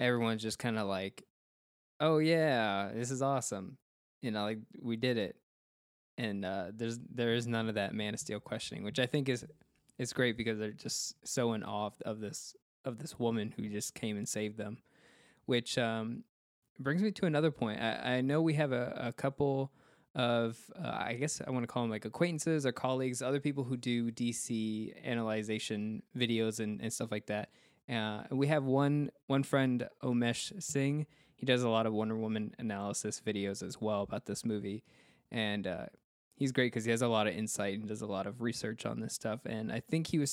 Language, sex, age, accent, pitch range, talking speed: English, male, 20-39, American, 110-135 Hz, 205 wpm